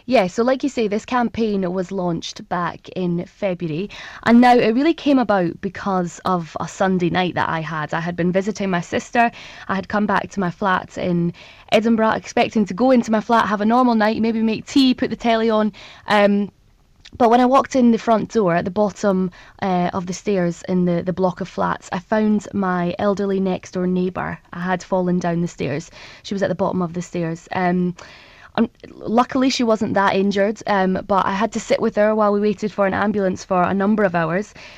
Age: 20-39